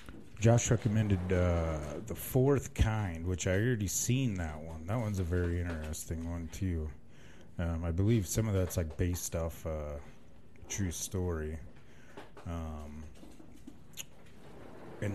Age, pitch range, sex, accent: 30-49, 80-110 Hz, male, American